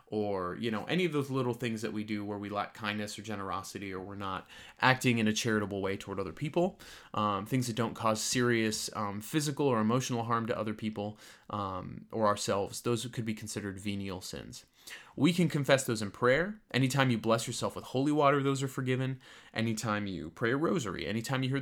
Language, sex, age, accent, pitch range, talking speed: English, male, 20-39, American, 110-135 Hz, 210 wpm